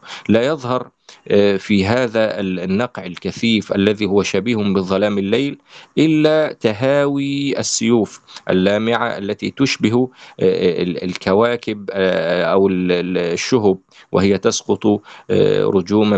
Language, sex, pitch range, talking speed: Arabic, male, 95-120 Hz, 85 wpm